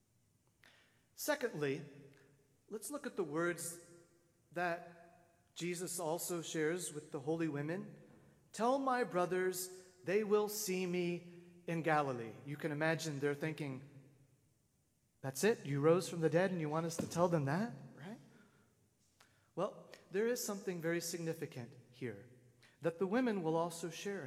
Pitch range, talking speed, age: 130-175 Hz, 140 wpm, 40-59